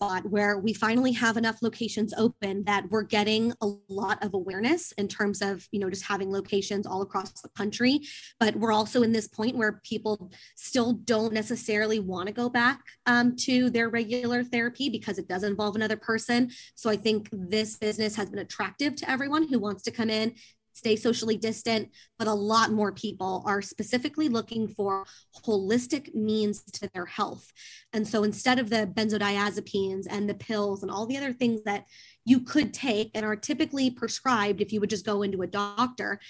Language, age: English, 20-39